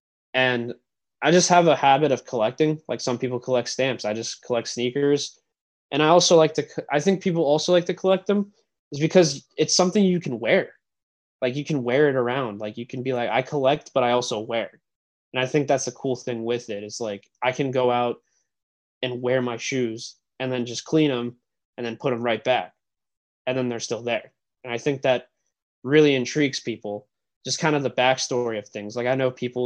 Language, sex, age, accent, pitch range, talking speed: English, male, 20-39, American, 115-145 Hz, 215 wpm